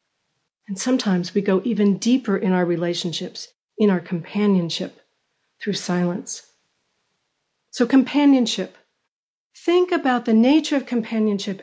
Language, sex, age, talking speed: English, female, 40-59, 115 wpm